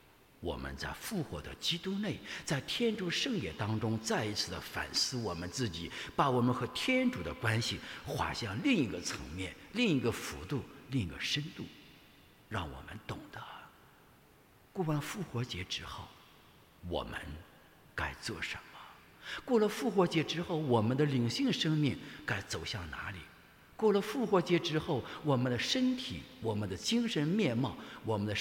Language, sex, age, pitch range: English, male, 50-69, 105-170 Hz